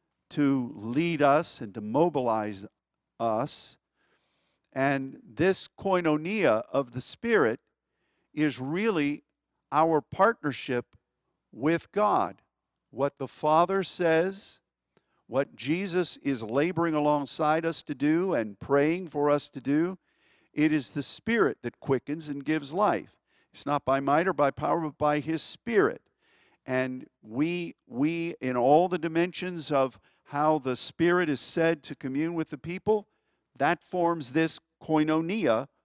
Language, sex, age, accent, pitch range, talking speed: English, male, 50-69, American, 130-160 Hz, 130 wpm